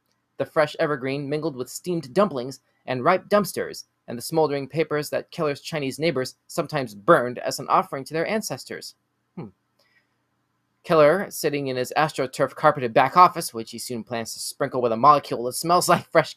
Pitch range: 130-175 Hz